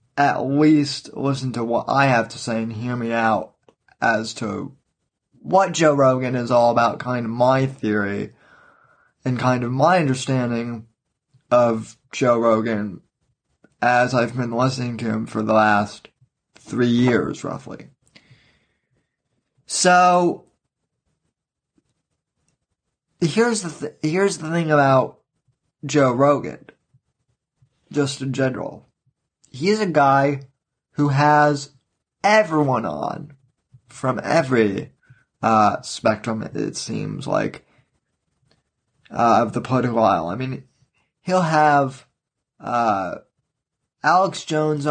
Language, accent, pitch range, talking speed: English, American, 120-145 Hz, 110 wpm